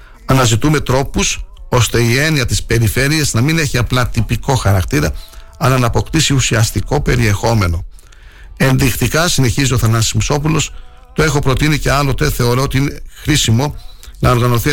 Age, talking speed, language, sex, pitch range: 60-79, 135 wpm, Greek, male, 115-140 Hz